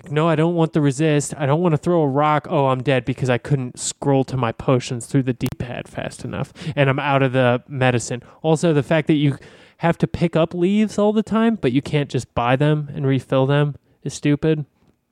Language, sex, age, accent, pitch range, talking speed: English, male, 20-39, American, 125-150 Hz, 230 wpm